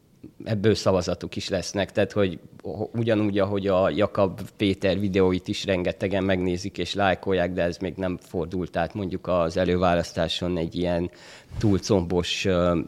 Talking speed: 135 wpm